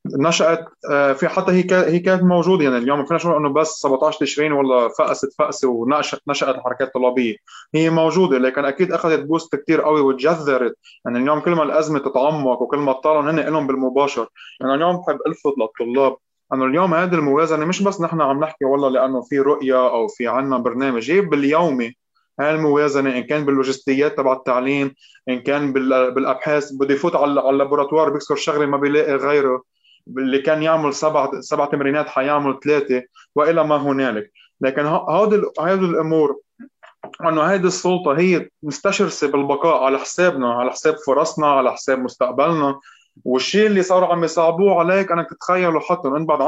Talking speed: 165 wpm